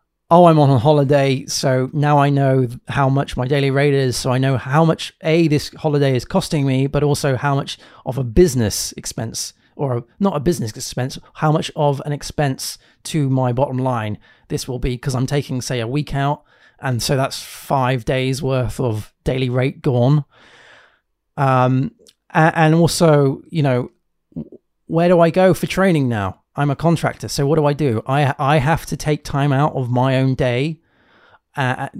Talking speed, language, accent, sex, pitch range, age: 190 wpm, English, British, male, 130-160 Hz, 30-49